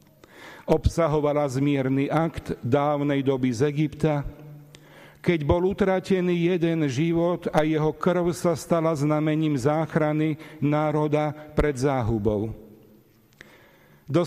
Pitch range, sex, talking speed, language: 120-155 Hz, male, 95 wpm, Slovak